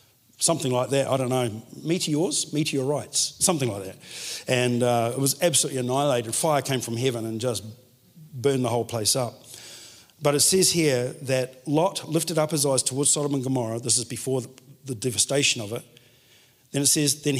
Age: 50-69